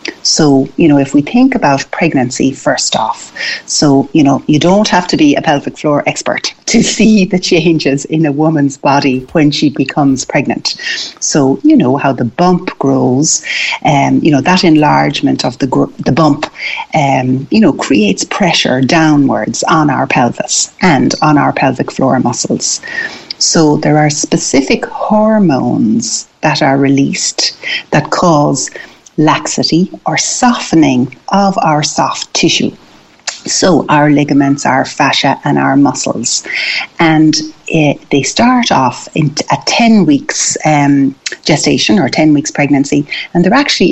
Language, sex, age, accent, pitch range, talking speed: English, female, 60-79, Irish, 140-185 Hz, 150 wpm